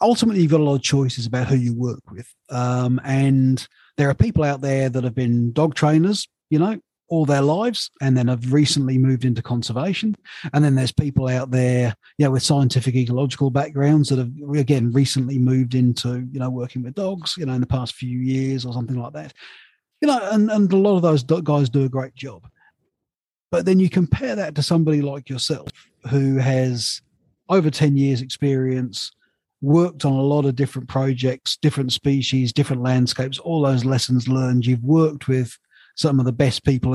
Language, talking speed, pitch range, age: English, 200 wpm, 130-150 Hz, 30-49